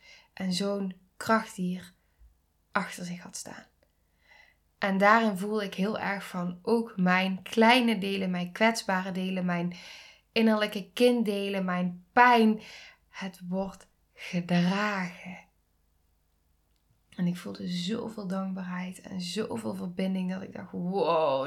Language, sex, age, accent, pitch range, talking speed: Dutch, female, 20-39, Dutch, 180-230 Hz, 115 wpm